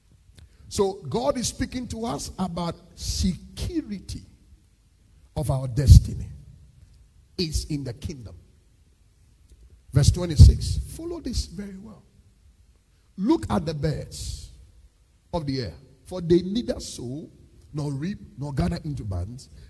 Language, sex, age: English, male, 50-69